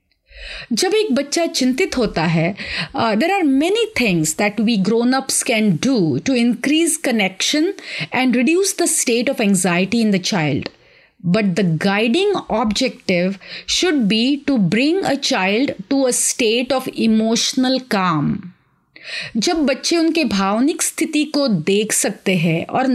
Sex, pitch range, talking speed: female, 200-300 Hz, 140 wpm